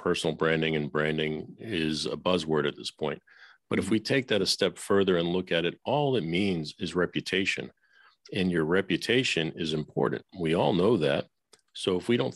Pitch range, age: 85-105 Hz, 40-59